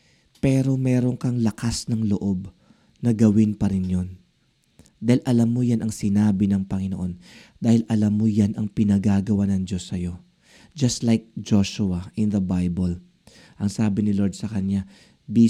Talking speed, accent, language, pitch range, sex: 160 wpm, native, Filipino, 100-125 Hz, male